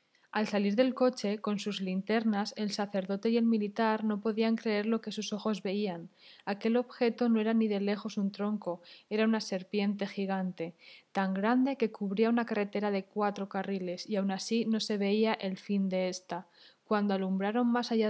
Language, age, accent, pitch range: Spanish, 20-39, Spanish, 195-225 Hz